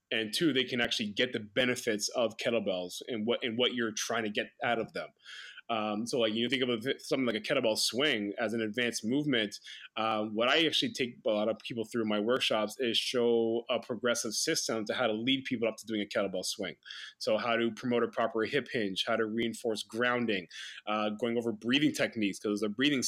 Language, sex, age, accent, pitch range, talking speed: English, male, 20-39, American, 110-130 Hz, 225 wpm